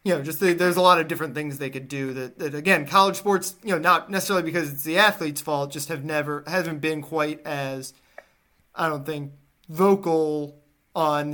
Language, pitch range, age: English, 135-160 Hz, 20-39